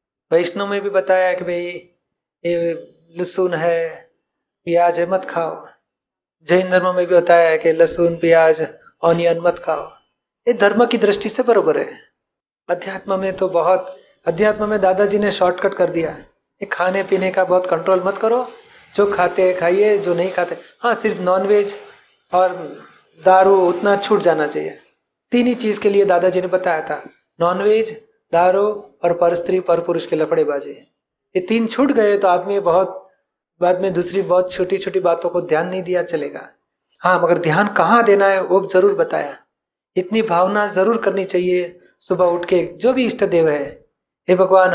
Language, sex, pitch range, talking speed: Hindi, male, 175-200 Hz, 175 wpm